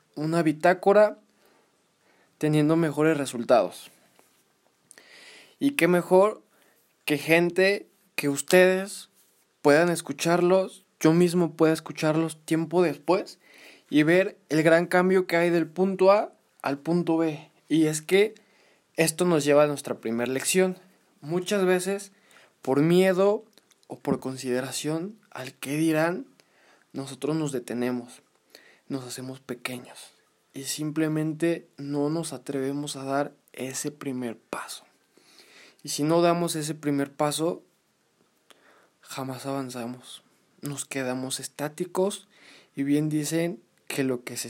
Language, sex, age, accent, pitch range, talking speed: Spanish, male, 20-39, Mexican, 140-175 Hz, 120 wpm